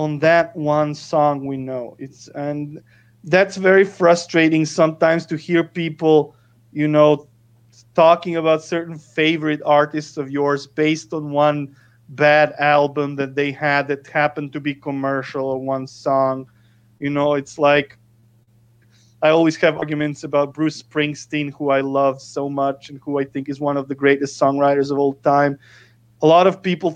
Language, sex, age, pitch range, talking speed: English, male, 30-49, 140-155 Hz, 165 wpm